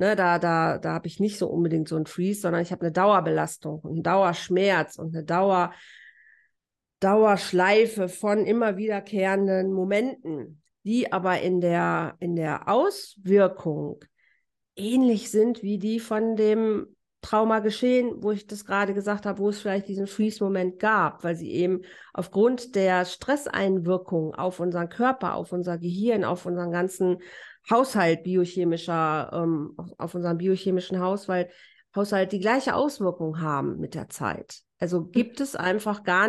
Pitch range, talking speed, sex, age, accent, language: 175-215 Hz, 145 wpm, female, 40-59, German, German